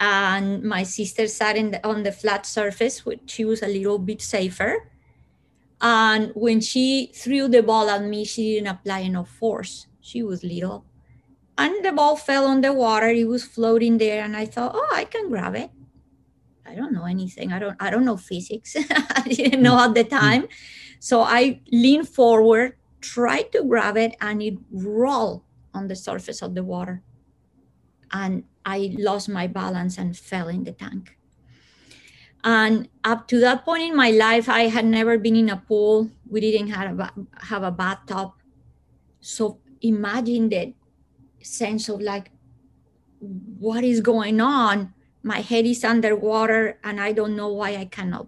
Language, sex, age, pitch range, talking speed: English, female, 30-49, 195-235 Hz, 170 wpm